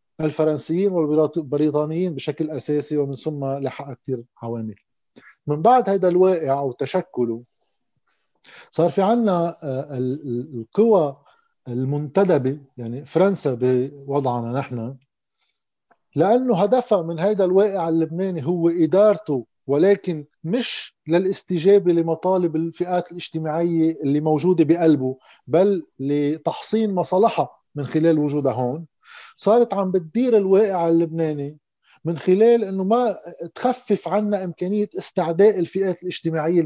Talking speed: 105 wpm